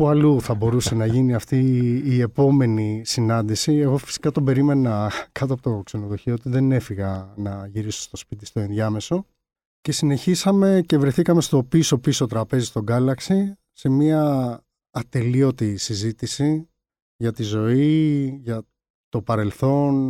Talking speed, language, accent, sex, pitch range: 135 wpm, Greek, native, male, 115-140 Hz